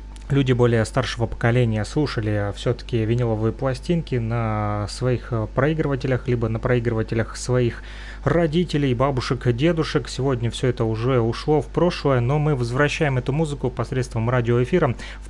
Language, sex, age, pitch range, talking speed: Russian, male, 30-49, 115-140 Hz, 130 wpm